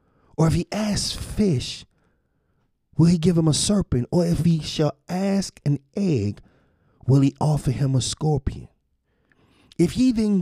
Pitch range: 110-150 Hz